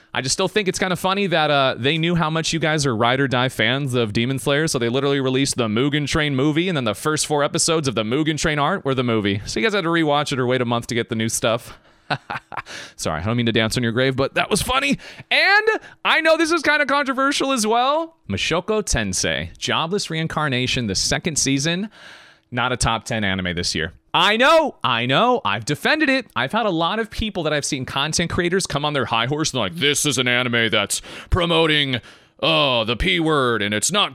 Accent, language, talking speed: American, English, 240 wpm